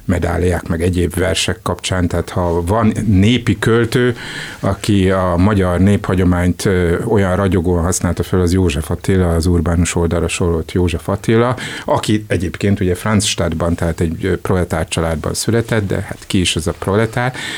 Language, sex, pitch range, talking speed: Hungarian, male, 85-105 Hz, 145 wpm